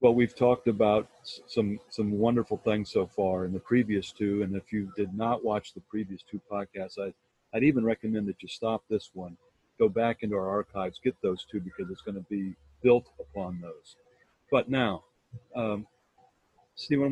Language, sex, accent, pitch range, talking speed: English, male, American, 100-120 Hz, 185 wpm